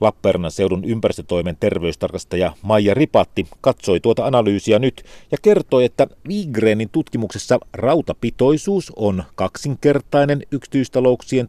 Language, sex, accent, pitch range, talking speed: Finnish, male, native, 90-130 Hz, 100 wpm